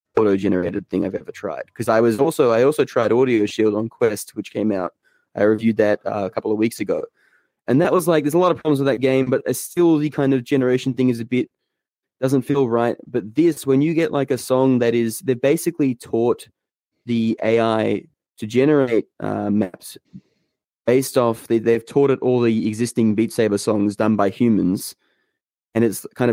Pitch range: 110-130 Hz